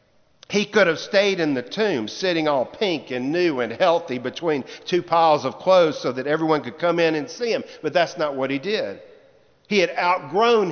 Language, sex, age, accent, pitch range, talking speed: English, male, 50-69, American, 155-205 Hz, 205 wpm